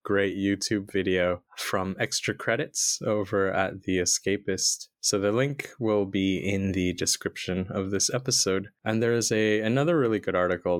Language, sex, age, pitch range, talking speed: English, male, 20-39, 95-120 Hz, 160 wpm